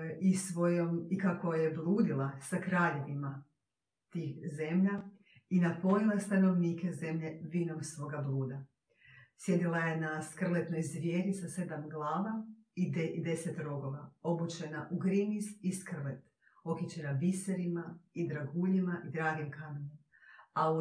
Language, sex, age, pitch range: Croatian, female, 40-59, 155-185 Hz